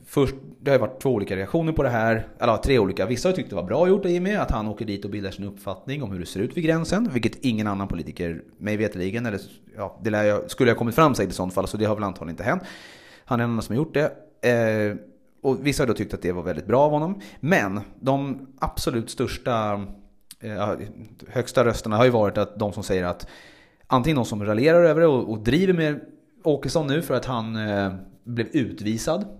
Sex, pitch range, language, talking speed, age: male, 100-140 Hz, Swedish, 235 wpm, 30-49